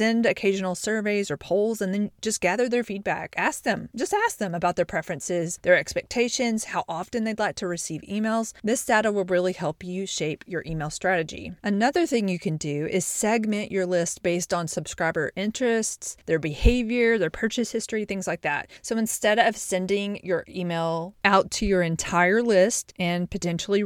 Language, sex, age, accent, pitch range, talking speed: English, female, 30-49, American, 175-220 Hz, 180 wpm